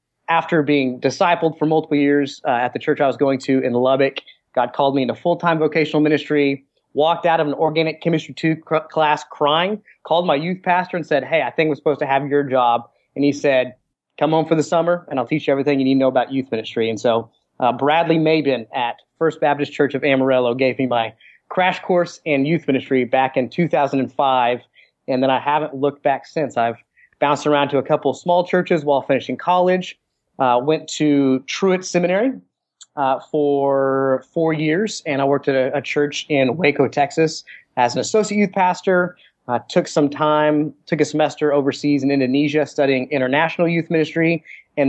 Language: English